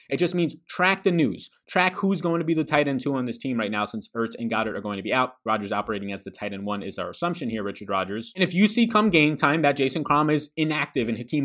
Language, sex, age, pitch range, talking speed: English, male, 20-39, 115-175 Hz, 295 wpm